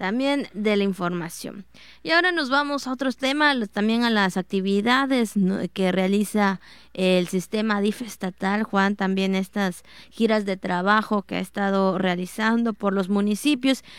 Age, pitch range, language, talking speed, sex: 20-39, 195-230 Hz, Spanish, 145 wpm, female